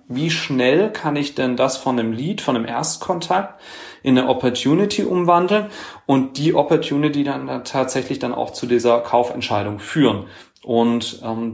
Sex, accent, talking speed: male, German, 150 wpm